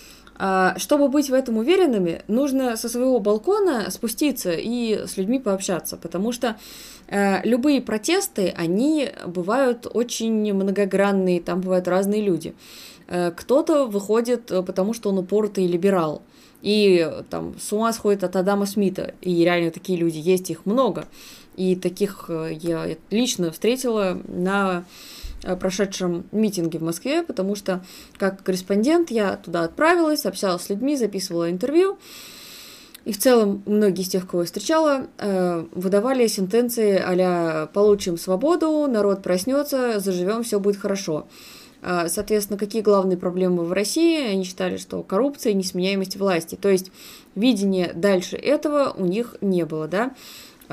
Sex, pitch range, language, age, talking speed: female, 185-240 Hz, Russian, 20-39, 135 wpm